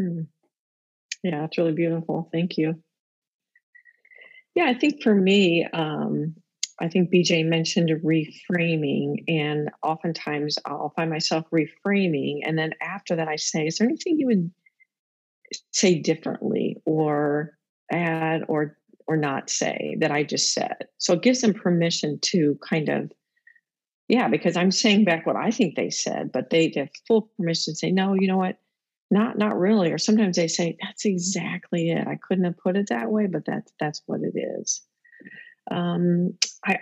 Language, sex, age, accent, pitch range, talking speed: English, female, 40-59, American, 160-205 Hz, 165 wpm